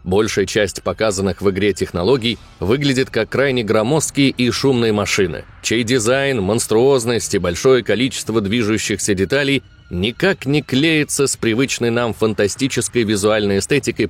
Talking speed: 130 wpm